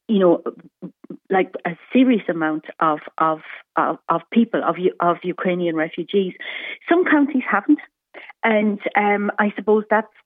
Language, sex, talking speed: English, female, 135 wpm